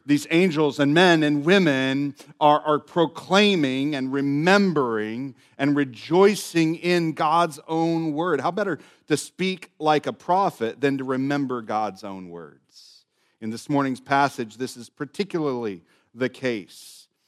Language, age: English, 40-59